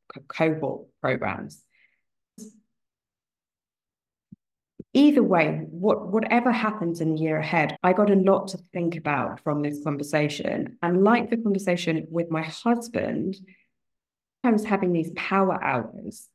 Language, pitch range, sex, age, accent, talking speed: English, 160-195 Hz, female, 30-49, British, 125 wpm